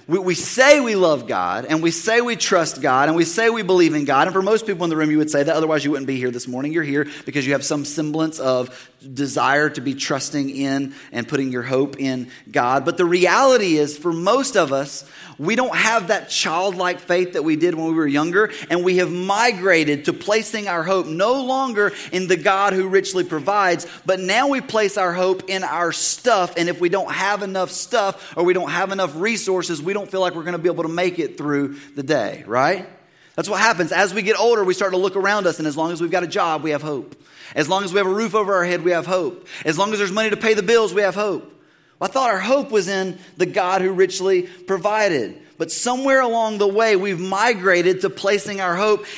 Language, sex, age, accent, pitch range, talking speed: English, male, 30-49, American, 160-200 Hz, 245 wpm